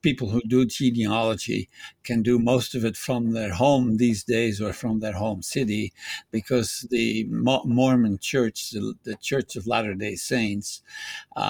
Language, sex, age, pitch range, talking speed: English, male, 60-79, 110-125 Hz, 150 wpm